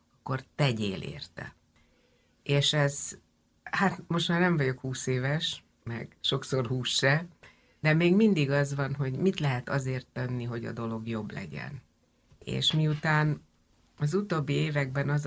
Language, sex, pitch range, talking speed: Hungarian, female, 125-150 Hz, 140 wpm